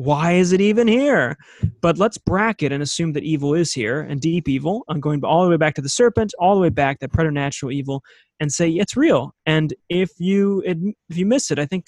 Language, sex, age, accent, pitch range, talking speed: English, male, 30-49, American, 140-180 Hz, 235 wpm